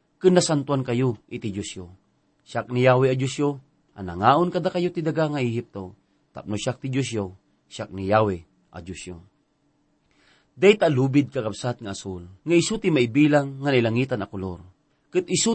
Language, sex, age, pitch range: English, male, 40-59, 105-150 Hz